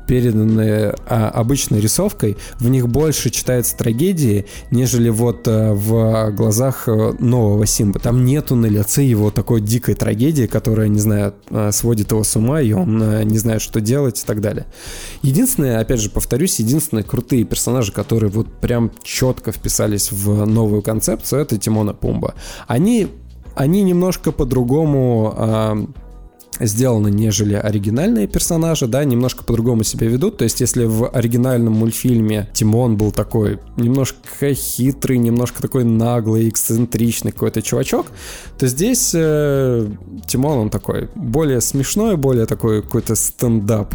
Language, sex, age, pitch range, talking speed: Russian, male, 20-39, 110-130 Hz, 140 wpm